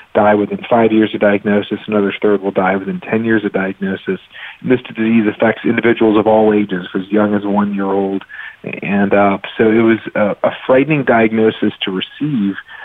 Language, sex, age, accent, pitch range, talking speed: English, male, 40-59, American, 100-115 Hz, 175 wpm